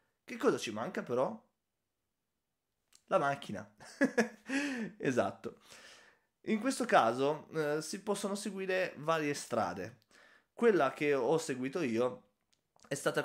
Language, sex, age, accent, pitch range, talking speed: Italian, male, 20-39, native, 110-150 Hz, 110 wpm